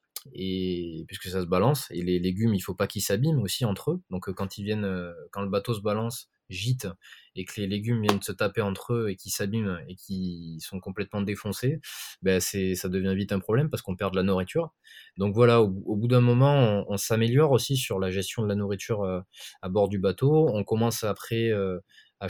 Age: 20-39